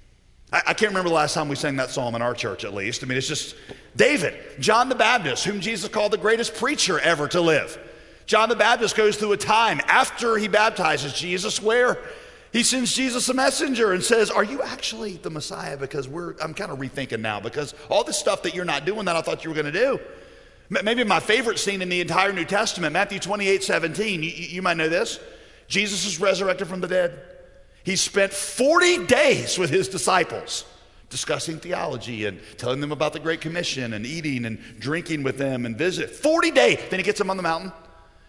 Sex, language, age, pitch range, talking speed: male, English, 40-59, 150-220 Hz, 210 wpm